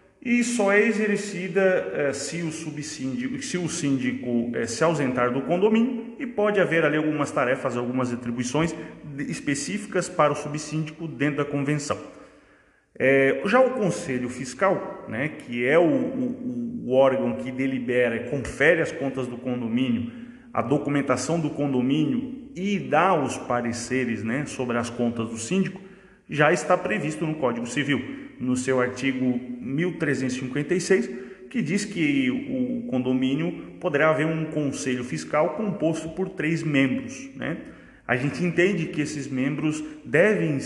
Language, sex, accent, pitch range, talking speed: Portuguese, male, Brazilian, 130-185 Hz, 145 wpm